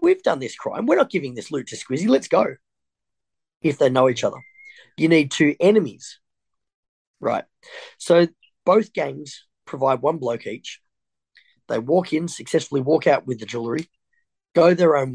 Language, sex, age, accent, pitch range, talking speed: English, male, 30-49, Australian, 135-185 Hz, 165 wpm